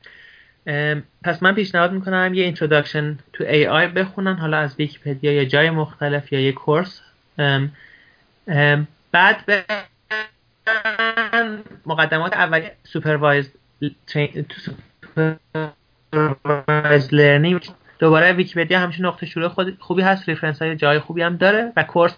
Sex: male